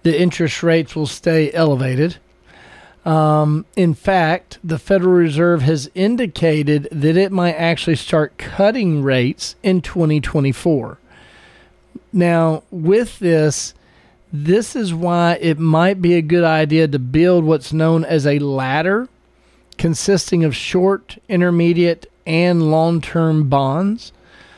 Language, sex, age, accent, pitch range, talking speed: English, male, 40-59, American, 155-185 Hz, 120 wpm